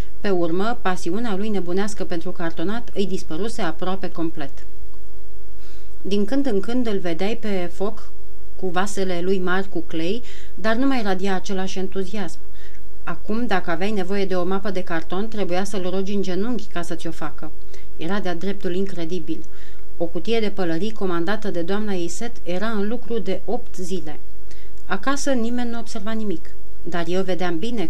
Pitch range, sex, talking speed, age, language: 175-215 Hz, female, 165 wpm, 30-49, Romanian